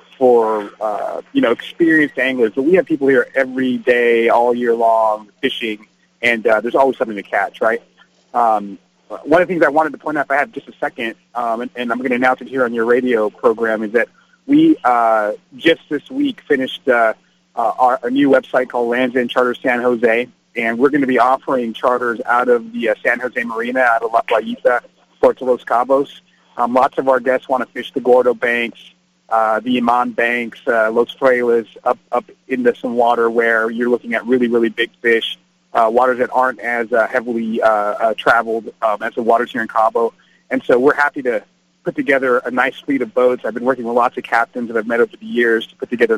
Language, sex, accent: English, male, American